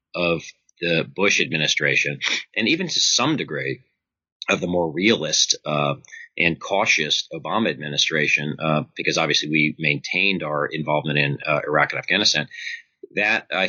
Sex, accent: male, American